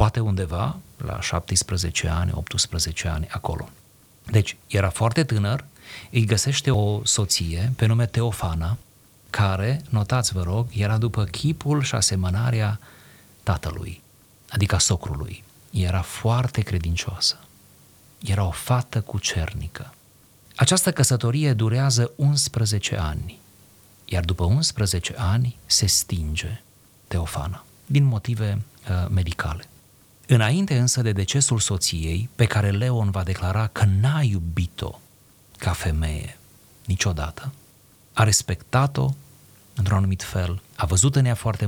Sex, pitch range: male, 95-120 Hz